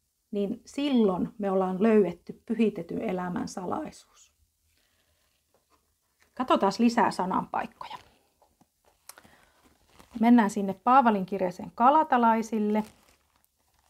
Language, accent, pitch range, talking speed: Finnish, native, 185-235 Hz, 70 wpm